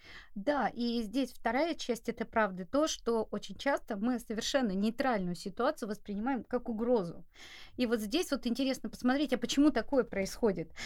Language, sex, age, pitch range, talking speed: Russian, female, 30-49, 220-270 Hz, 155 wpm